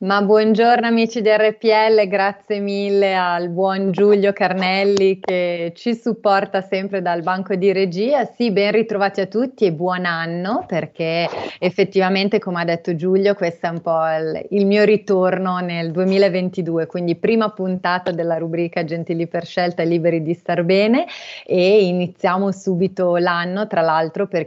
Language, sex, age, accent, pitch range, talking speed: Italian, female, 30-49, native, 165-200 Hz, 155 wpm